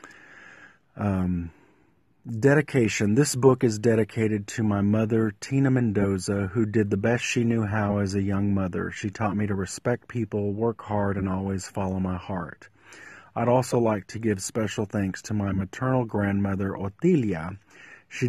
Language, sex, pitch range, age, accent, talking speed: English, male, 95-115 Hz, 40-59, American, 160 wpm